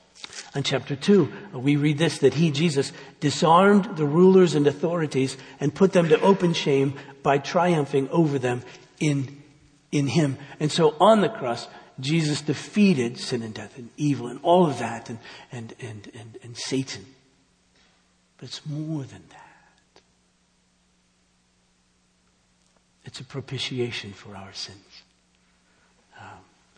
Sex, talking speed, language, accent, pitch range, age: male, 135 wpm, English, American, 115-140 Hz, 60-79